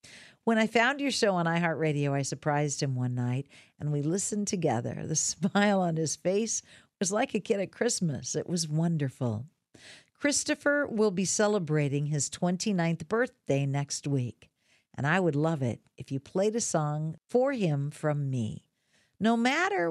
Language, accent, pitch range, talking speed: English, American, 140-200 Hz, 165 wpm